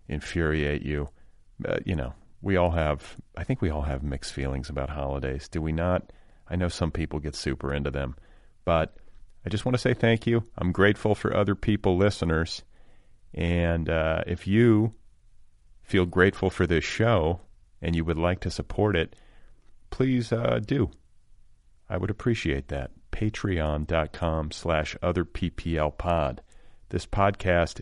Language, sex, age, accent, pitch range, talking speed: English, male, 40-59, American, 75-95 Hz, 155 wpm